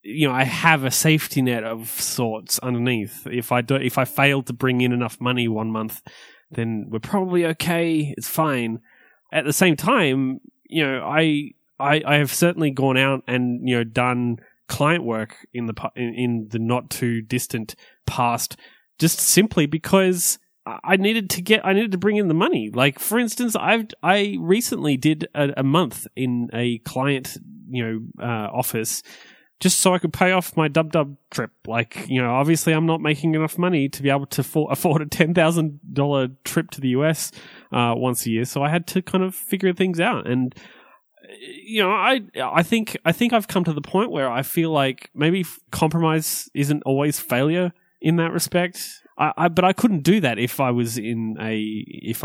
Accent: Australian